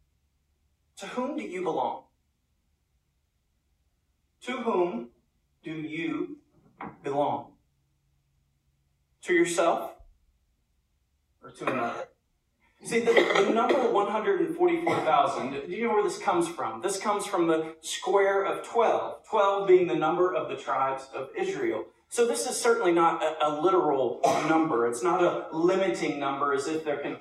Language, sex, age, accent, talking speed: English, male, 40-59, American, 135 wpm